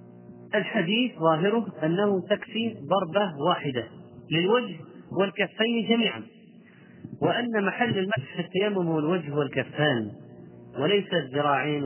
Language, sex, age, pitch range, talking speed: Arabic, male, 40-59, 135-180 Hz, 85 wpm